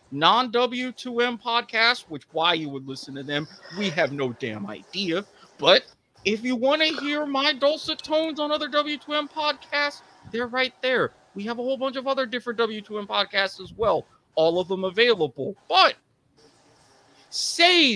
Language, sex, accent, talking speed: English, male, American, 160 wpm